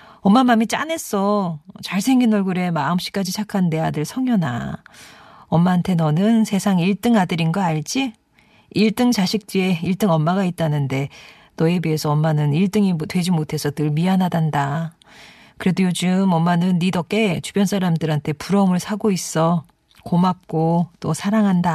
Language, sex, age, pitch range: Korean, female, 40-59, 160-215 Hz